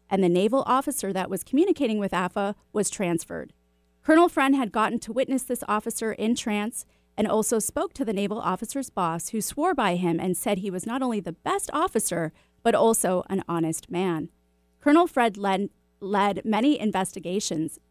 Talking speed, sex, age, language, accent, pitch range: 180 wpm, female, 30-49, English, American, 185-260 Hz